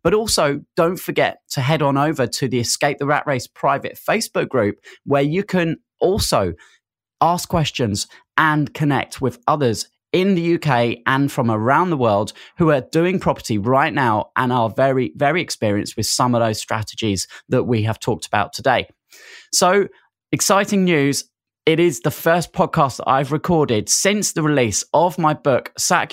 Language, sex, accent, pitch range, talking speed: English, male, British, 115-165 Hz, 170 wpm